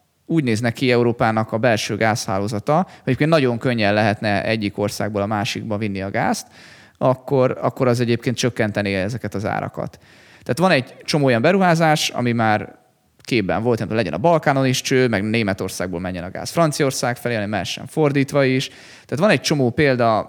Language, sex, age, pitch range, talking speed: Hungarian, male, 20-39, 105-135 Hz, 170 wpm